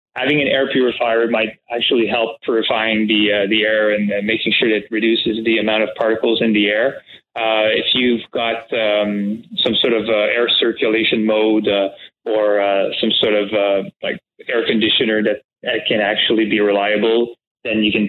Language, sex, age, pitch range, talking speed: English, male, 20-39, 105-115 Hz, 190 wpm